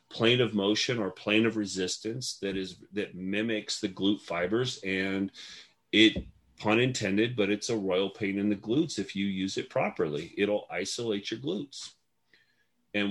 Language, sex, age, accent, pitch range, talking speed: English, male, 30-49, American, 95-115 Hz, 165 wpm